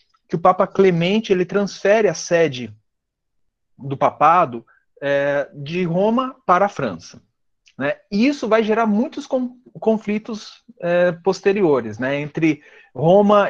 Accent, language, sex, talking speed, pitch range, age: Brazilian, Portuguese, male, 130 wpm, 140-195 Hz, 40-59